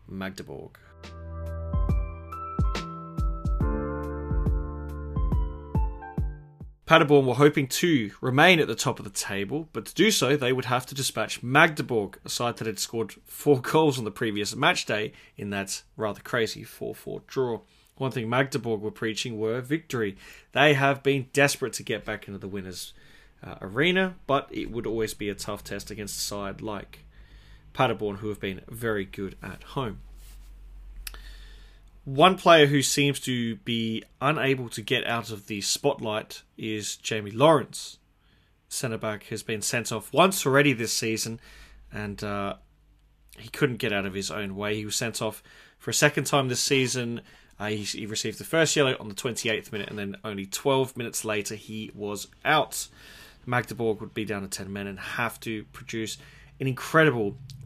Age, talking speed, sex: 20-39, 165 wpm, male